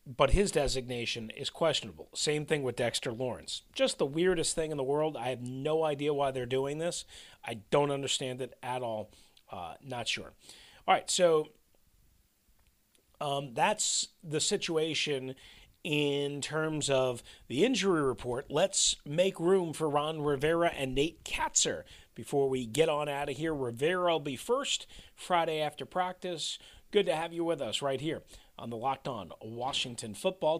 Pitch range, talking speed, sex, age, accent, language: 135-180 Hz, 165 wpm, male, 40-59, American, English